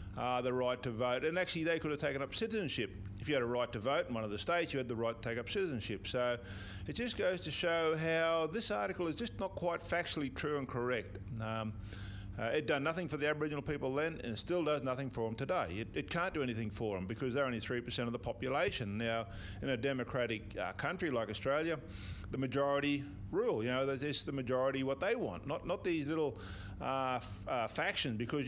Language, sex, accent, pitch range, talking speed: English, male, Australian, 110-150 Hz, 235 wpm